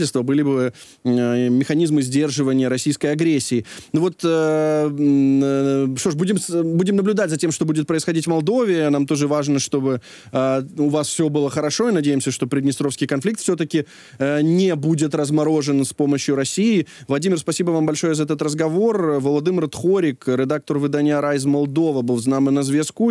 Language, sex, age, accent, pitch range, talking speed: Ukrainian, male, 20-39, native, 140-170 Hz, 165 wpm